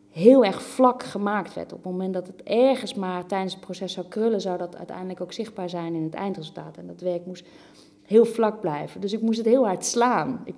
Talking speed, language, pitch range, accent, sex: 235 wpm, Dutch, 185-240 Hz, Dutch, female